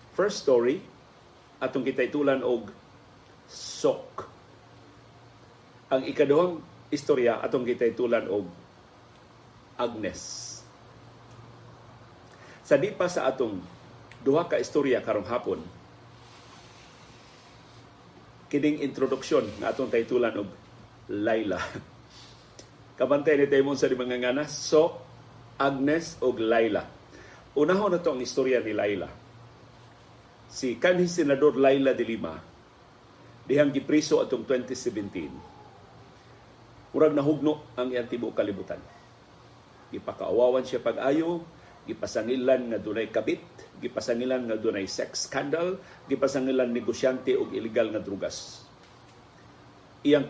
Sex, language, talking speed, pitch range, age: male, Filipino, 95 wpm, 120-145 Hz, 40-59